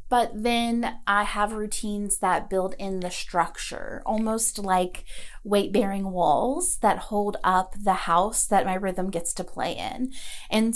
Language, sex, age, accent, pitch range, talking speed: English, female, 30-49, American, 190-250 Hz, 150 wpm